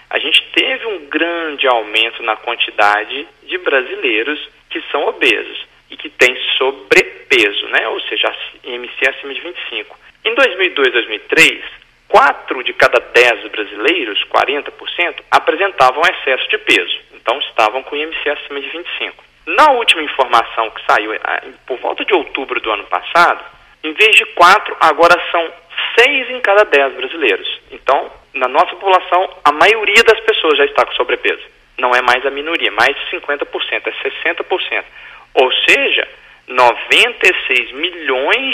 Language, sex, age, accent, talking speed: Portuguese, male, 40-59, Brazilian, 145 wpm